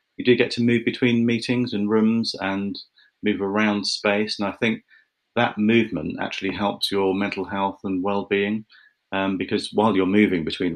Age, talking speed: 30-49, 175 wpm